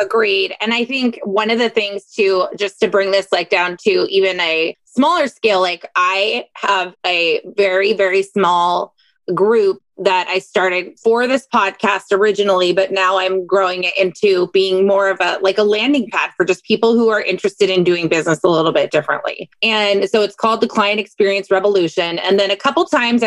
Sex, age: female, 20-39